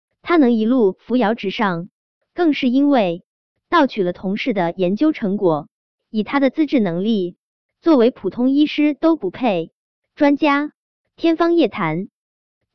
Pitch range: 195-285 Hz